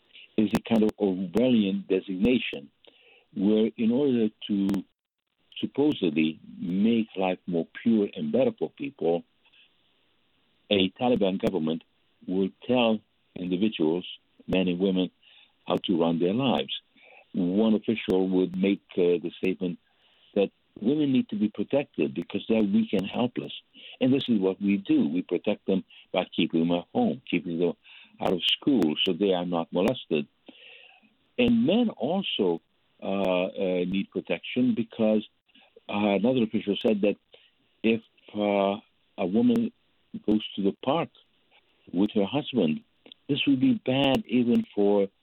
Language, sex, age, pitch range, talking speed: English, male, 60-79, 95-125 Hz, 140 wpm